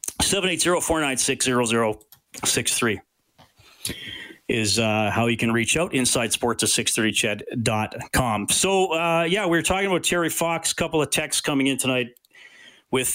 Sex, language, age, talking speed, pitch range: male, English, 40-59, 130 wpm, 110-125 Hz